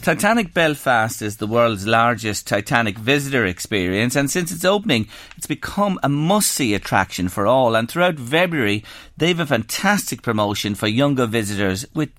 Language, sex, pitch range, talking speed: English, male, 105-160 Hz, 160 wpm